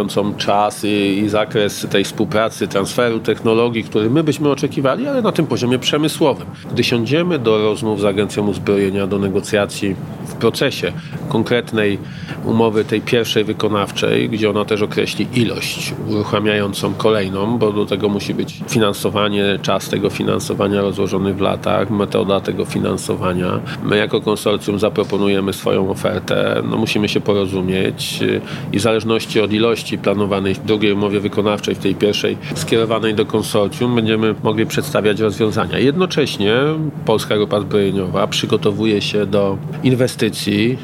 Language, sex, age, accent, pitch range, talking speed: Polish, male, 40-59, native, 100-115 Hz, 135 wpm